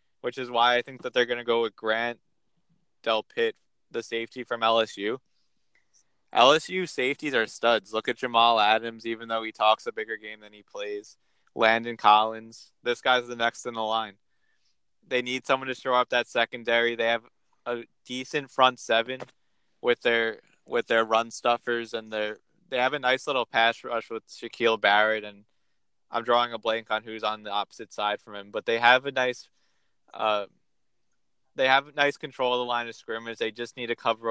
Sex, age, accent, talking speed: male, 20-39, American, 190 wpm